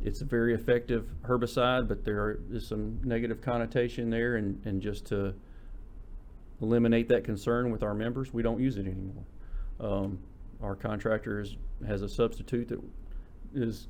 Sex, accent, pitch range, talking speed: male, American, 100-120 Hz, 150 wpm